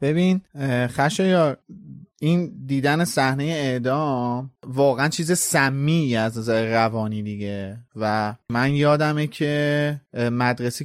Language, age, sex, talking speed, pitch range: Persian, 30-49, male, 105 wpm, 115-140 Hz